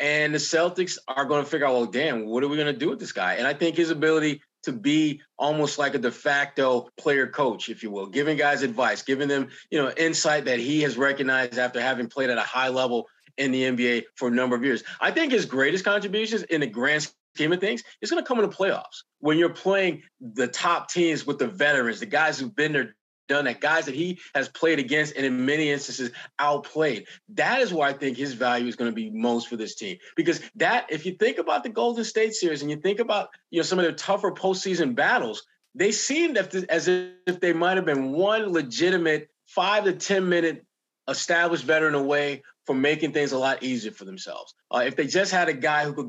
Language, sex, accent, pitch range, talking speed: English, male, American, 135-180 Hz, 230 wpm